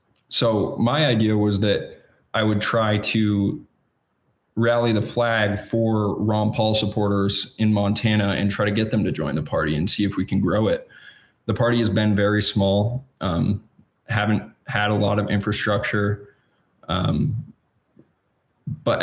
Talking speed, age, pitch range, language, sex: 155 wpm, 20-39, 100-115 Hz, English, male